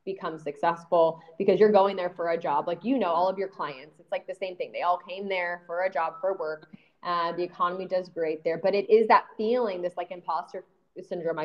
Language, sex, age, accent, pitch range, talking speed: English, female, 20-39, American, 175-205 Hz, 235 wpm